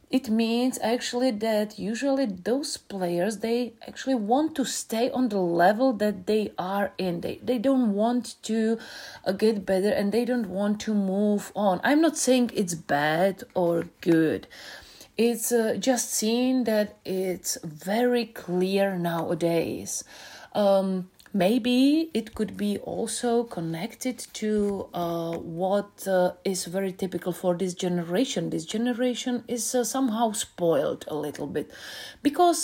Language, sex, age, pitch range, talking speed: Turkish, female, 30-49, 190-250 Hz, 145 wpm